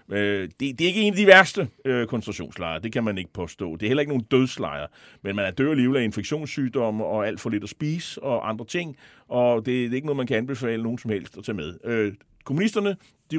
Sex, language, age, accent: male, Danish, 40-59, native